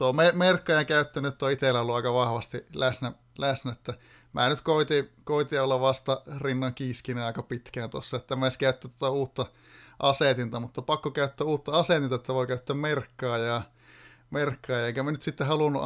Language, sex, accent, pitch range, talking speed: Finnish, male, native, 125-145 Hz, 170 wpm